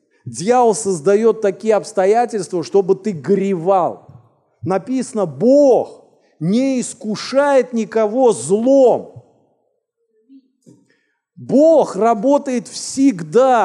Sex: male